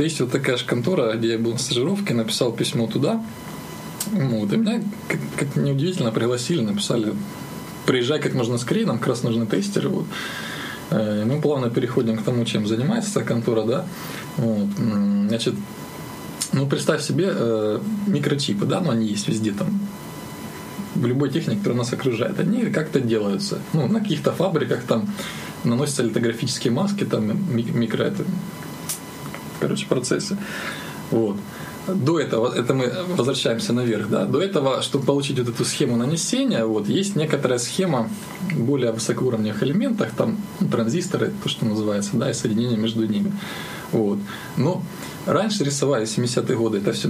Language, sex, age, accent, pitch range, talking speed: Ukrainian, male, 20-39, native, 115-190 Hz, 150 wpm